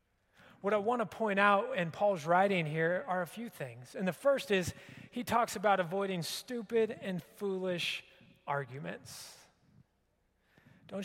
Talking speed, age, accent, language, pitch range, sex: 145 wpm, 30-49, American, English, 180-245 Hz, male